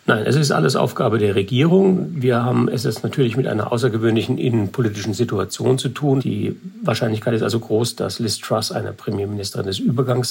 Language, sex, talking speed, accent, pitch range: German, male, 180 wpm, German, 100-130 Hz